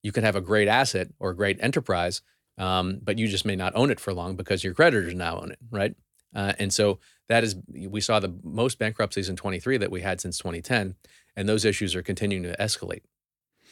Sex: male